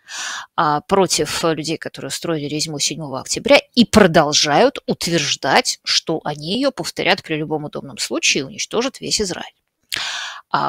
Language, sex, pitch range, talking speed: Russian, female, 155-195 Hz, 125 wpm